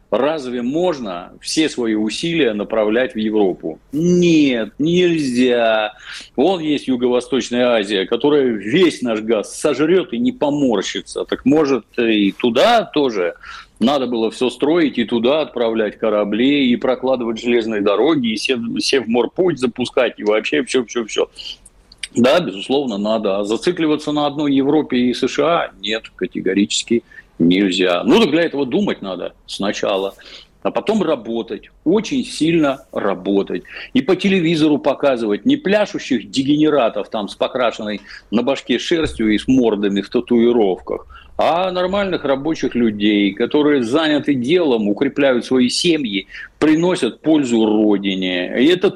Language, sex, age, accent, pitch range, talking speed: Russian, male, 50-69, native, 110-160 Hz, 130 wpm